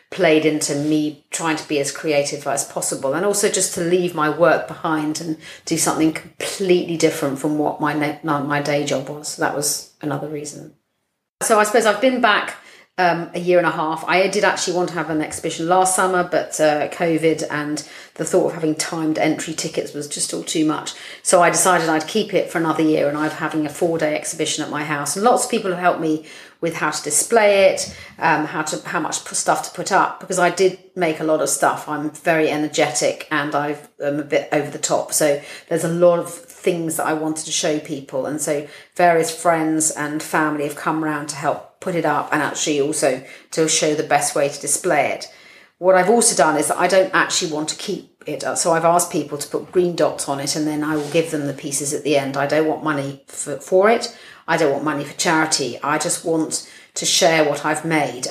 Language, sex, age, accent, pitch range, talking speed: English, female, 40-59, British, 150-175 Hz, 230 wpm